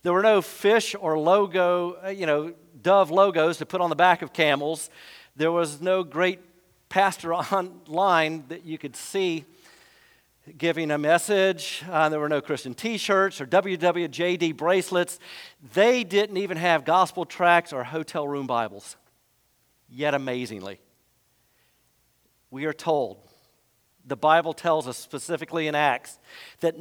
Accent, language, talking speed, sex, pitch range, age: American, English, 140 wpm, male, 150-180 Hz, 50-69